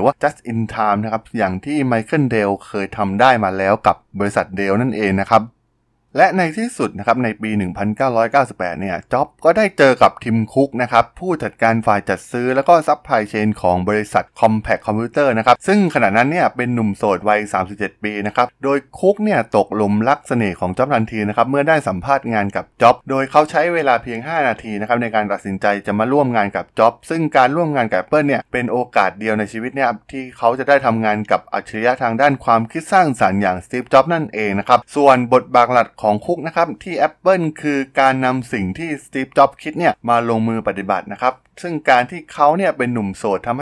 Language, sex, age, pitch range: Thai, male, 20-39, 105-140 Hz